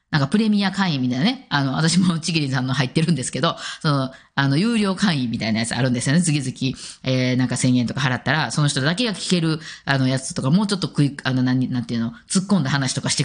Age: 20-39